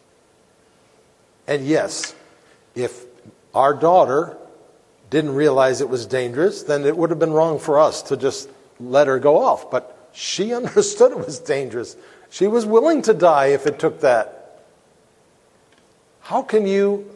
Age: 50-69